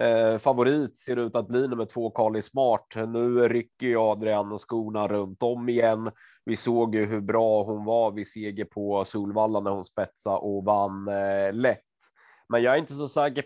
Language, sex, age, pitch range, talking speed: Swedish, male, 20-39, 105-115 Hz, 185 wpm